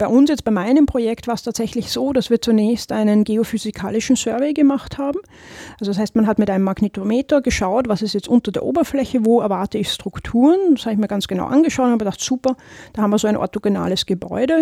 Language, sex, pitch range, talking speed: German, female, 205-250 Hz, 225 wpm